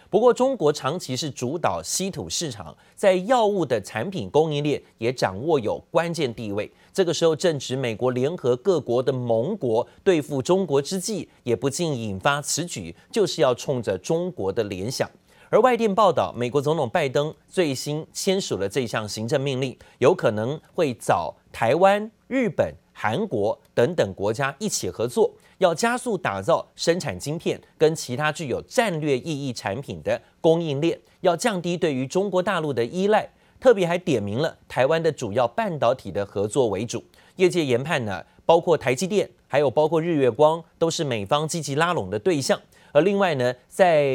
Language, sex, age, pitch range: Chinese, male, 30-49, 130-185 Hz